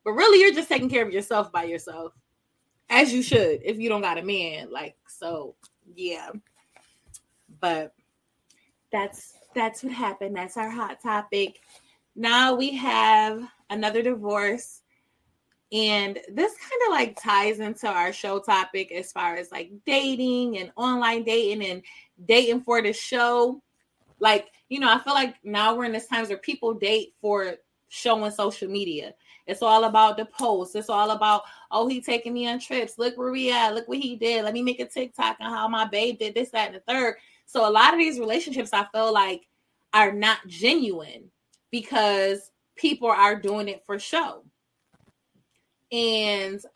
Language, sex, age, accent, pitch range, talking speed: English, female, 20-39, American, 205-245 Hz, 170 wpm